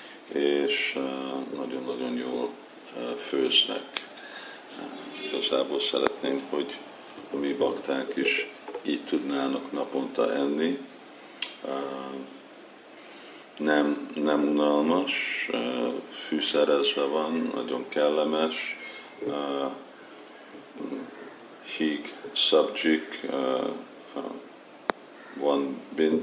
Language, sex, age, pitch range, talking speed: Hungarian, male, 50-69, 70-80 Hz, 70 wpm